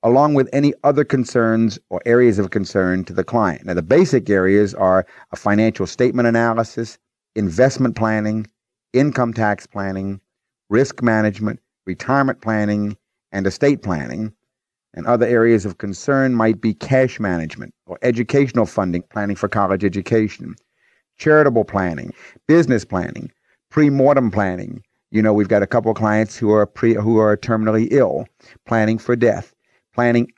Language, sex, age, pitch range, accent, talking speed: English, male, 50-69, 105-130 Hz, American, 140 wpm